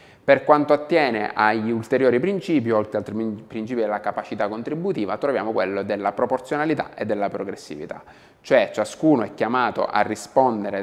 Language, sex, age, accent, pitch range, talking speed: Italian, male, 30-49, native, 105-145 Hz, 140 wpm